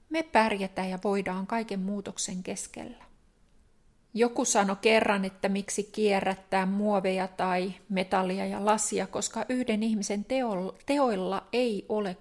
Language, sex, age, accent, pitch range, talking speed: Finnish, female, 30-49, native, 195-230 Hz, 125 wpm